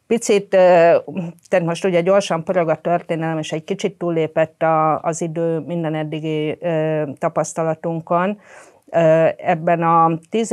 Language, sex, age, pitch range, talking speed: Hungarian, female, 50-69, 145-170 Hz, 110 wpm